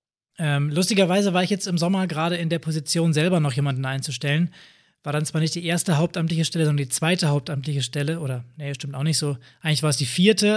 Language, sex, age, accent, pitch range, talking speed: German, male, 20-39, German, 140-165 Hz, 215 wpm